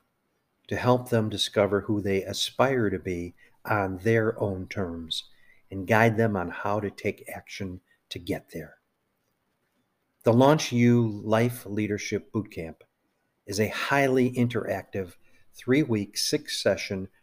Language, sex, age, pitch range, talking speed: English, male, 50-69, 95-115 Hz, 125 wpm